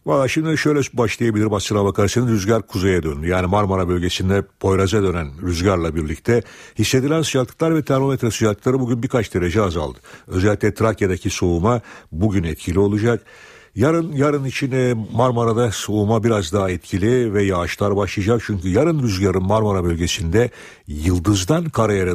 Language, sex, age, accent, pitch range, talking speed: Turkish, male, 60-79, native, 95-120 Hz, 135 wpm